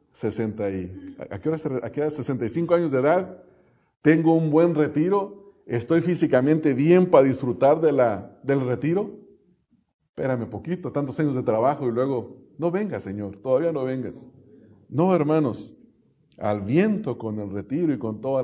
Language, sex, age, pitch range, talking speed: English, male, 40-59, 110-150 Hz, 155 wpm